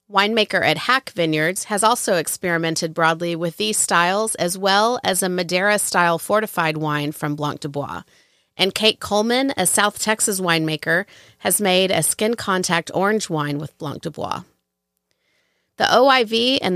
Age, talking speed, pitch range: 40-59, 150 wpm, 170-215 Hz